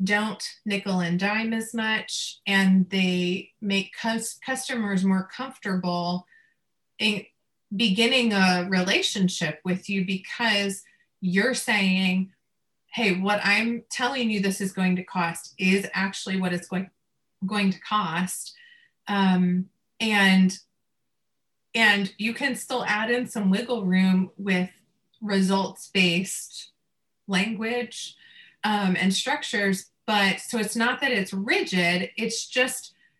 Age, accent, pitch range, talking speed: 30-49, American, 185-225 Hz, 115 wpm